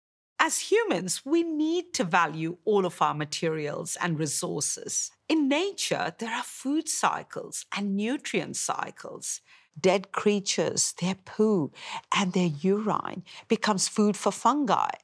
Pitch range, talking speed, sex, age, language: 170-255 Hz, 130 wpm, female, 50-69, English